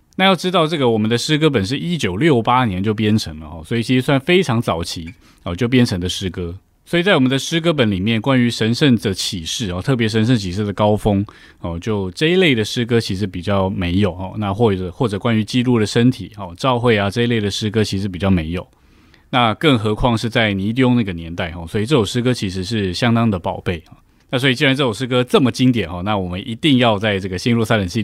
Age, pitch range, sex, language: 20-39, 95-130 Hz, male, Chinese